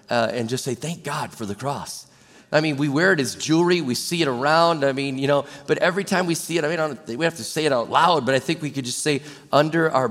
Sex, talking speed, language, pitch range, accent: male, 285 wpm, English, 125-165 Hz, American